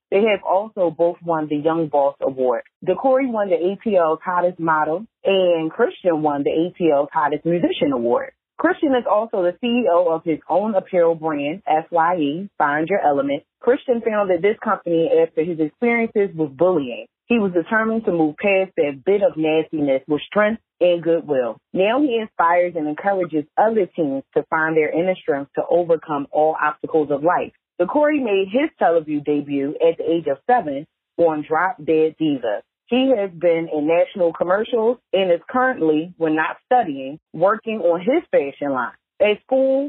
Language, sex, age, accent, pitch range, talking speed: English, female, 30-49, American, 160-220 Hz, 170 wpm